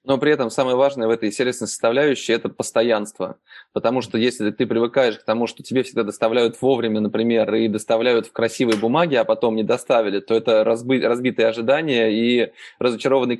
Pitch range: 115-135 Hz